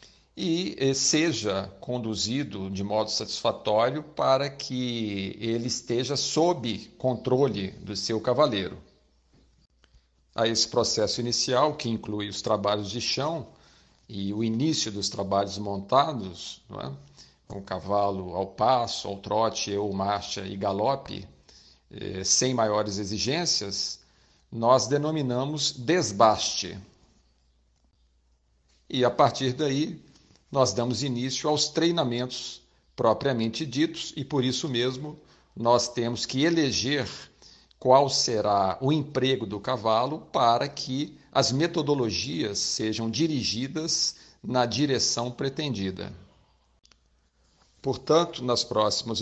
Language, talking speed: Portuguese, 105 wpm